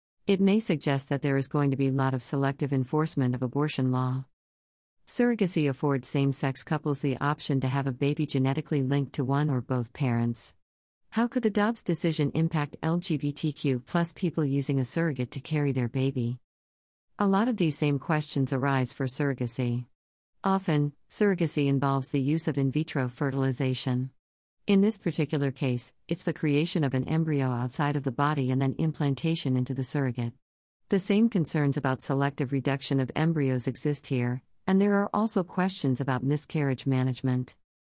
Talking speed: 170 wpm